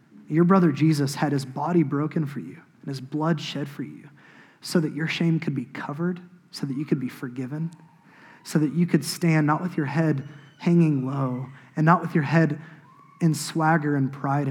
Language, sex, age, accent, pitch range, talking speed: English, male, 20-39, American, 145-180 Hz, 200 wpm